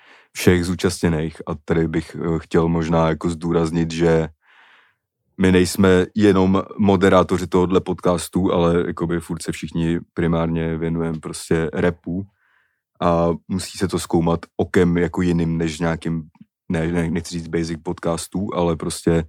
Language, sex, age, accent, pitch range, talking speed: Czech, male, 30-49, native, 85-95 Hz, 130 wpm